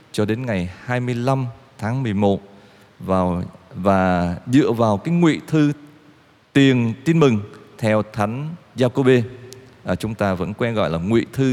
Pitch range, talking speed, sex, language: 105-145 Hz, 145 wpm, male, Vietnamese